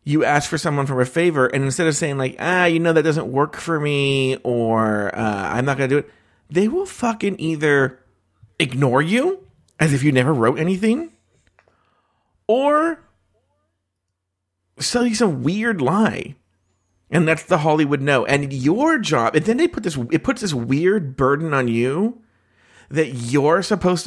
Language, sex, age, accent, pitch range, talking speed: English, male, 40-59, American, 115-180 Hz, 170 wpm